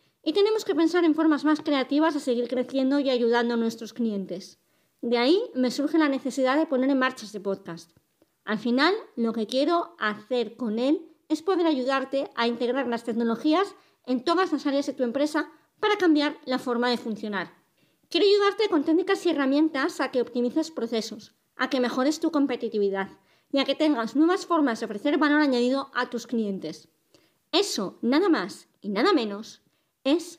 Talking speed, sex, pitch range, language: 180 wpm, female, 240-320 Hz, Spanish